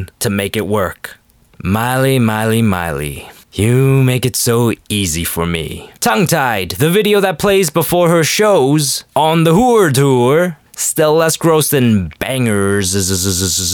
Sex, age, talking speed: male, 20-39, 140 wpm